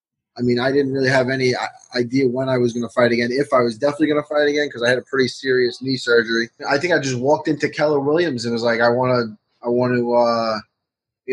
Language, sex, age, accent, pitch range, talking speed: English, male, 20-39, American, 120-145 Hz, 265 wpm